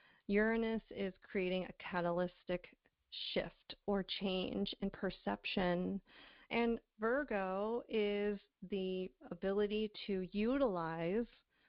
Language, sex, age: English, female, 30-49